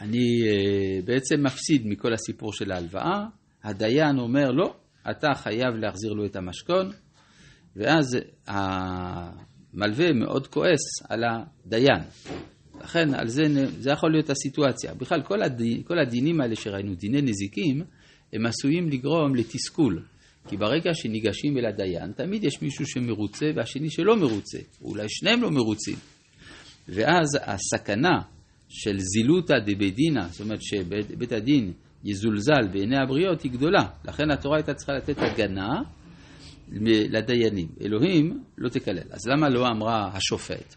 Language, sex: Hebrew, male